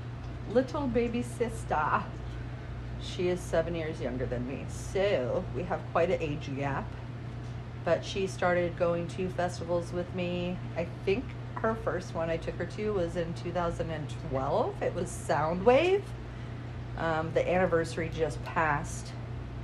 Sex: female